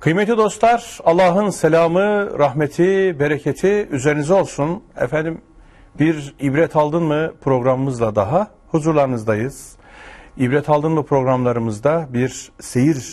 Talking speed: 100 wpm